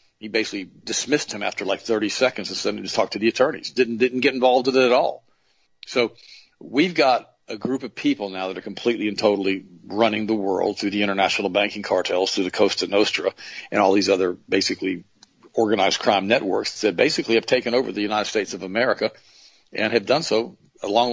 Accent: American